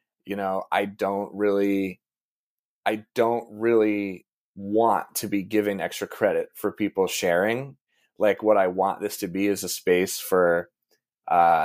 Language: English